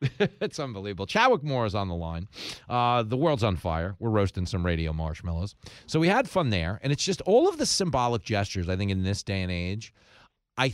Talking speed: 220 wpm